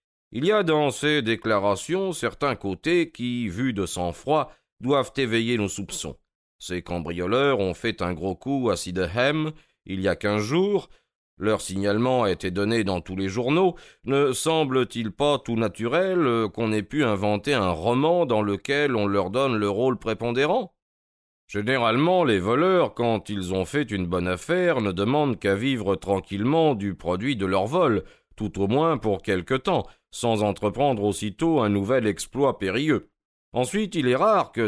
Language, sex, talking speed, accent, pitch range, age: French, male, 165 wpm, French, 100-140 Hz, 40-59